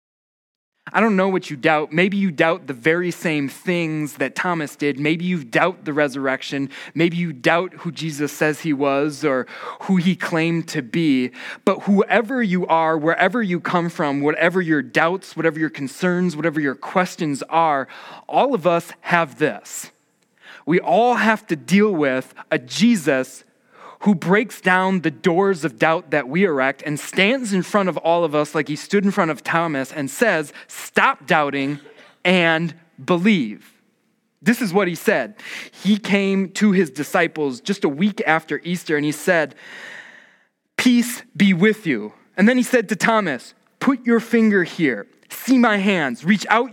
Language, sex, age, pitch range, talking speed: English, male, 20-39, 155-205 Hz, 170 wpm